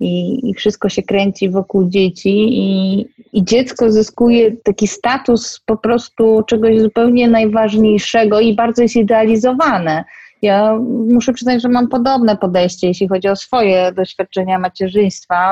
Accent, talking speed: native, 135 wpm